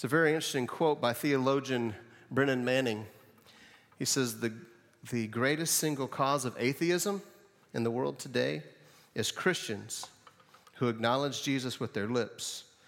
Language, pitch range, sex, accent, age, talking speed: English, 115-145 Hz, male, American, 40-59, 140 wpm